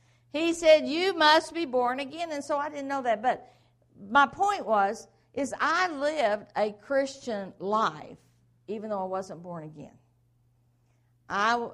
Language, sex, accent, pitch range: English, female, American, 150-245 Hz